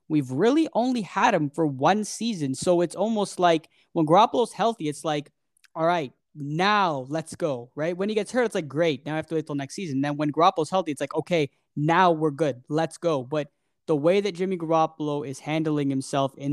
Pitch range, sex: 145-180 Hz, male